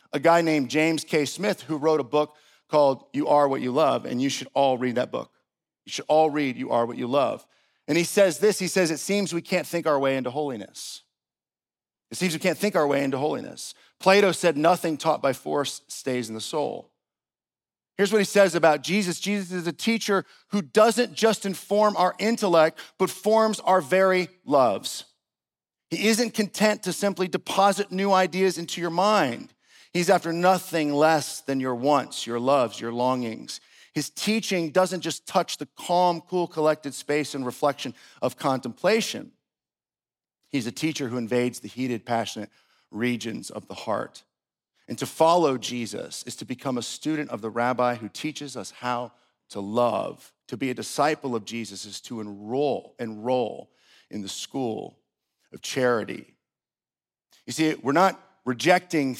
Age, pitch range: 40-59, 130-185 Hz